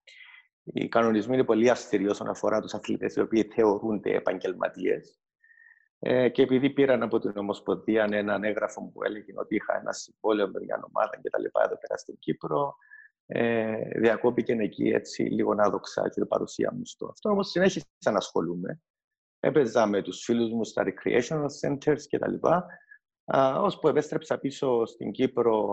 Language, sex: Greek, male